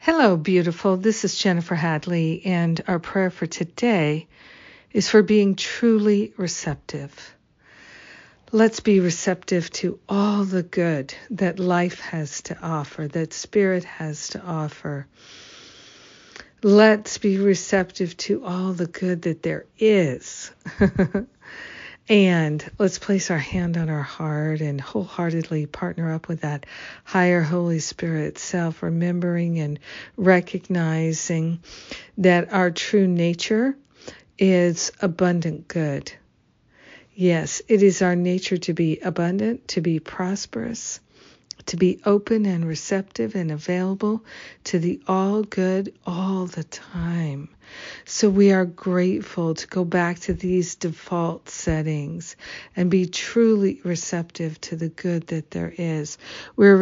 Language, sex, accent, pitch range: English, female, American, 165-195 Hz